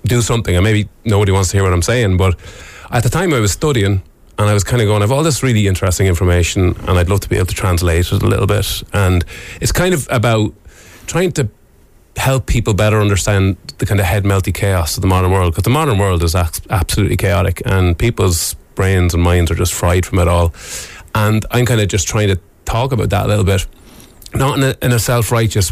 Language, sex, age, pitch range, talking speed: English, male, 30-49, 90-110 Hz, 230 wpm